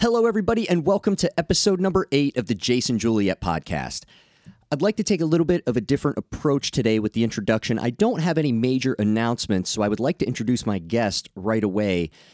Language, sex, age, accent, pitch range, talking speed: English, male, 30-49, American, 95-145 Hz, 215 wpm